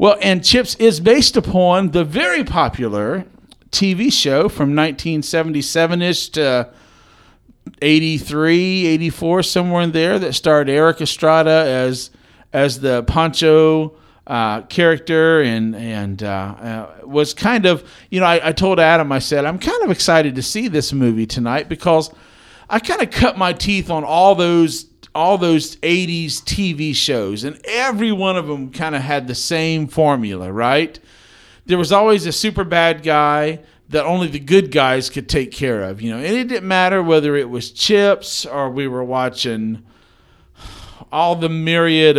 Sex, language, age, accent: male, English, 50-69, American